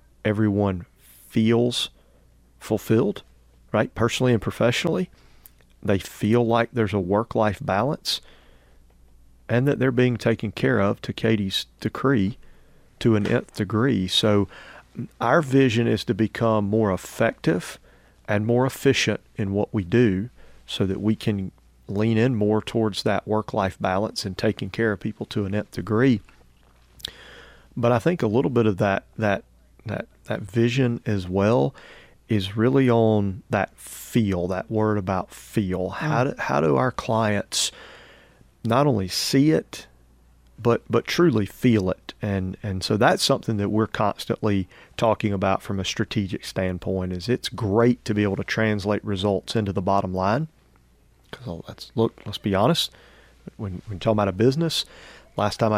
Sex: male